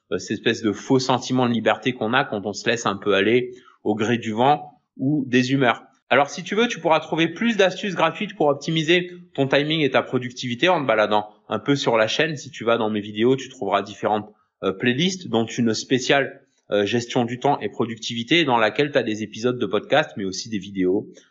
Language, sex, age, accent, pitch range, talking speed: French, male, 20-39, French, 120-165 Hz, 220 wpm